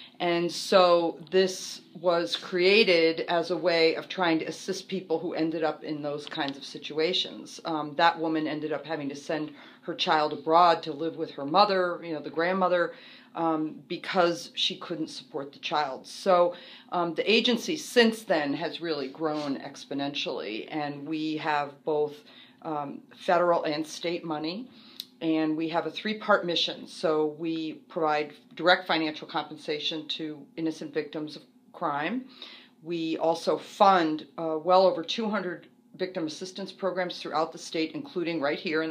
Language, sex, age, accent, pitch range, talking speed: English, female, 40-59, American, 155-185 Hz, 155 wpm